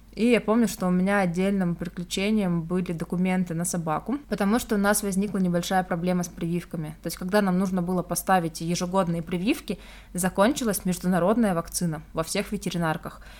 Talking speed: 160 wpm